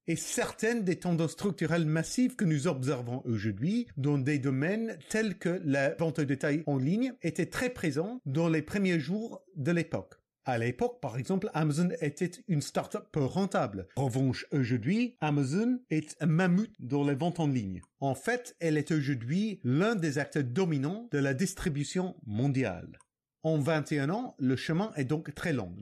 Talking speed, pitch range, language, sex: 170 wpm, 140-190 Hz, French, male